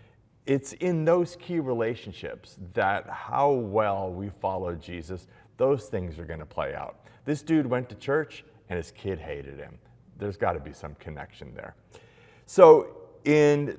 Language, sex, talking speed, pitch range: English, male, 160 wpm, 95-135 Hz